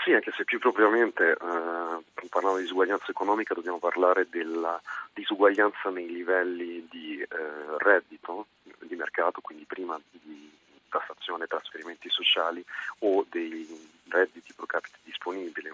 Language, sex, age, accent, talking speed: Italian, male, 30-49, native, 130 wpm